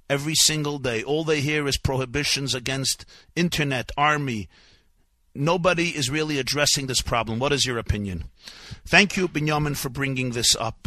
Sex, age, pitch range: male, 50-69, 115-150 Hz